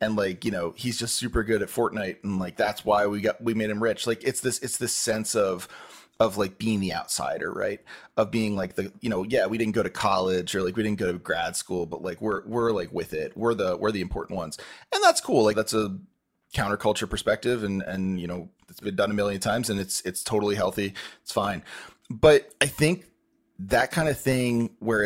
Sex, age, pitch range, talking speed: male, 30-49, 100-135 Hz, 235 wpm